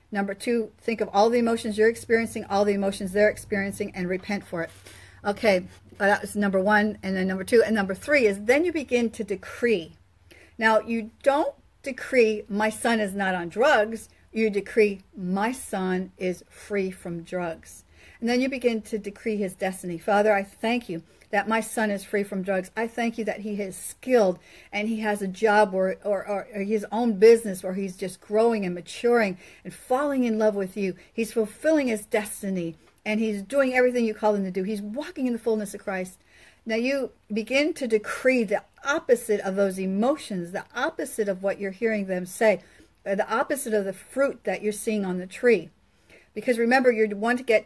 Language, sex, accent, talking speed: English, female, American, 200 wpm